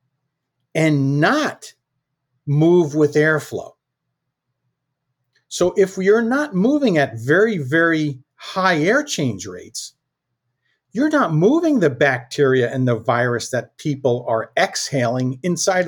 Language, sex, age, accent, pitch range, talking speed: English, male, 50-69, American, 130-180 Hz, 115 wpm